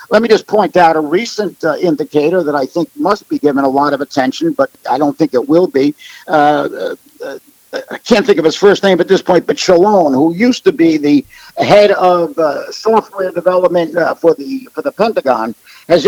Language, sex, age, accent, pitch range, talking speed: English, male, 50-69, American, 160-195 Hz, 215 wpm